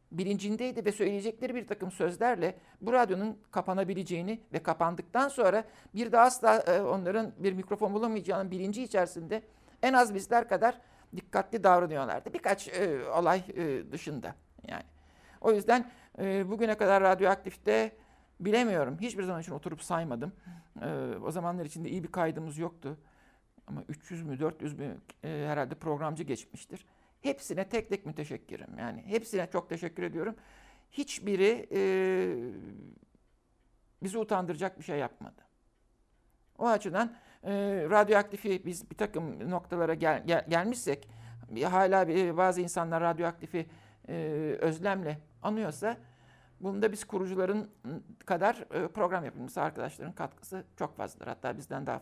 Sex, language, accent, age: male, Turkish, native, 60-79